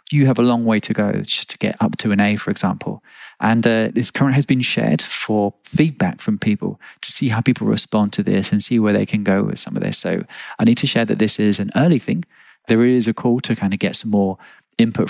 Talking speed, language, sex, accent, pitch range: 260 wpm, English, male, British, 105-120 Hz